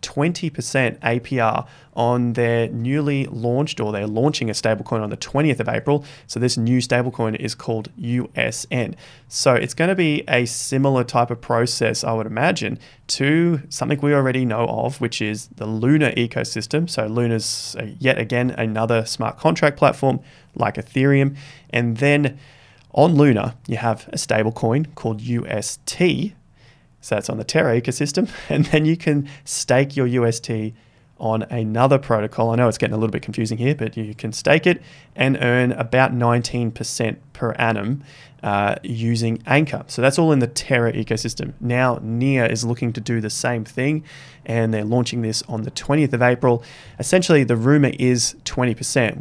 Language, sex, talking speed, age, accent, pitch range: English, male, 165 wpm, 20-39, Australian, 115-140 Hz